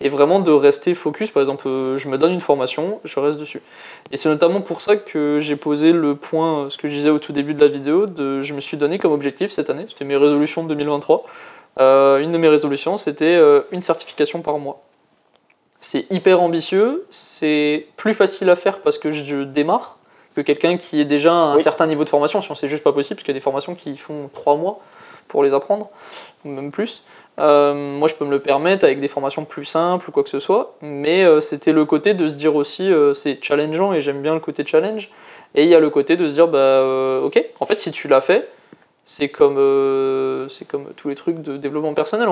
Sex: male